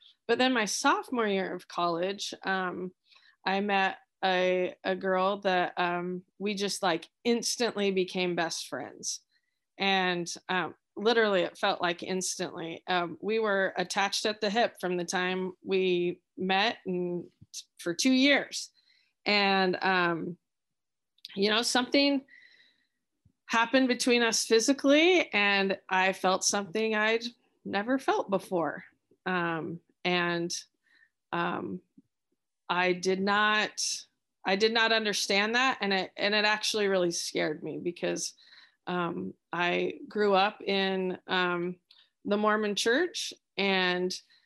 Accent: American